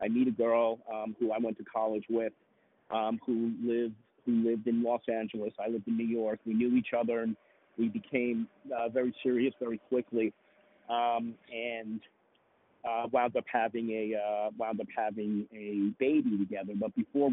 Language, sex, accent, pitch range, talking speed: English, male, American, 105-120 Hz, 180 wpm